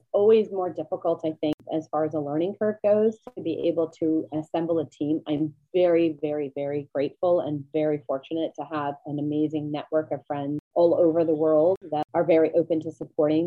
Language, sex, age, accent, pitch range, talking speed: English, female, 30-49, American, 155-195 Hz, 195 wpm